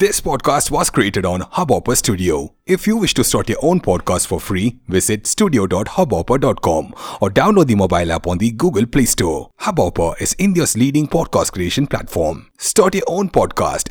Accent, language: native, Tamil